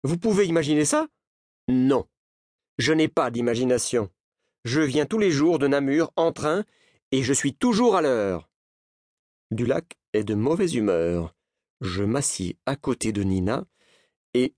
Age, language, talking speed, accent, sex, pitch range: 40-59, French, 150 wpm, French, male, 110-175 Hz